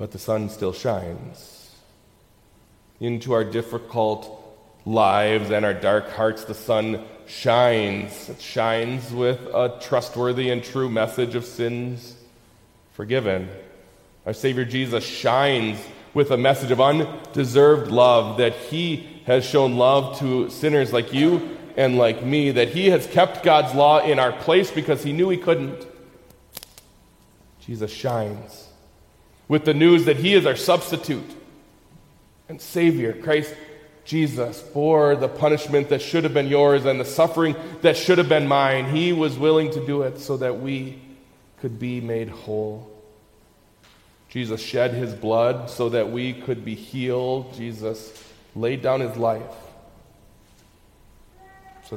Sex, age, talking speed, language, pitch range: male, 30-49, 140 wpm, English, 110-145 Hz